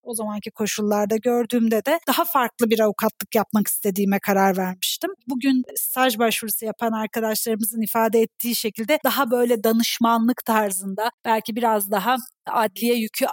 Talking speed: 135 wpm